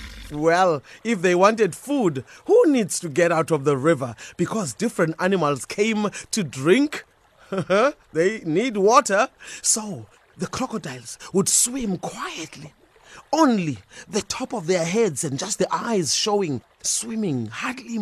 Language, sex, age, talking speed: English, male, 30-49, 135 wpm